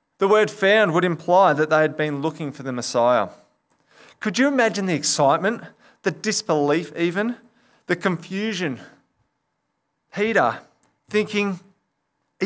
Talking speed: 125 wpm